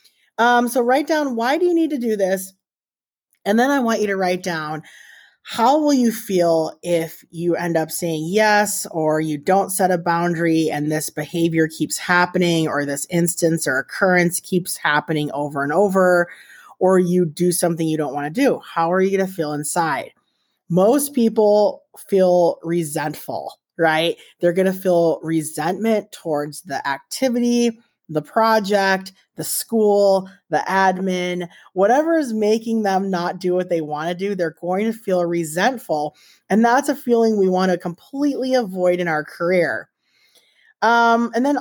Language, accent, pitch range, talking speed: English, American, 165-220 Hz, 165 wpm